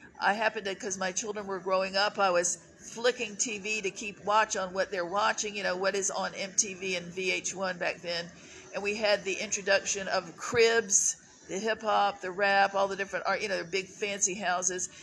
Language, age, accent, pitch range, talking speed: English, 50-69, American, 180-205 Hz, 205 wpm